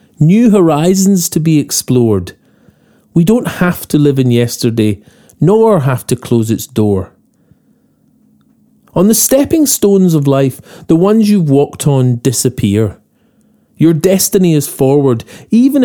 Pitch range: 120-185 Hz